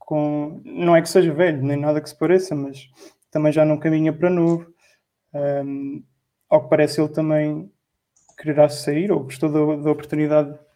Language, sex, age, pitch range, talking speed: Portuguese, male, 20-39, 155-175 Hz, 175 wpm